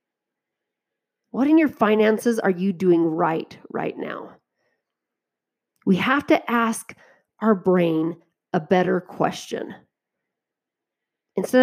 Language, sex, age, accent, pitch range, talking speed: English, female, 30-49, American, 195-265 Hz, 105 wpm